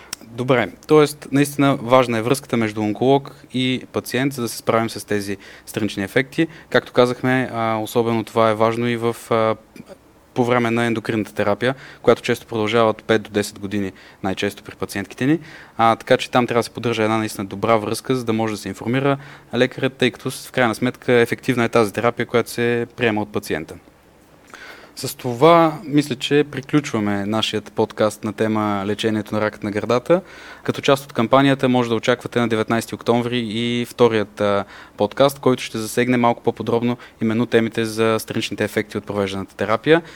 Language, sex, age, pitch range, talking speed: Bulgarian, male, 20-39, 110-125 Hz, 170 wpm